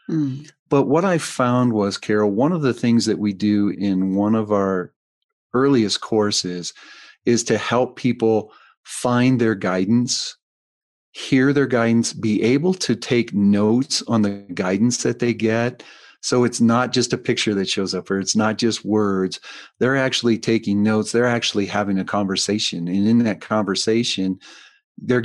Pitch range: 100-125 Hz